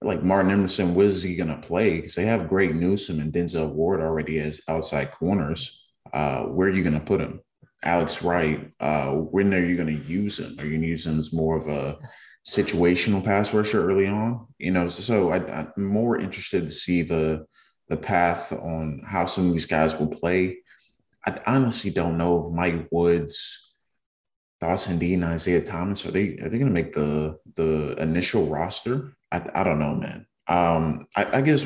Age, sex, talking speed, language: 20-39, male, 200 wpm, English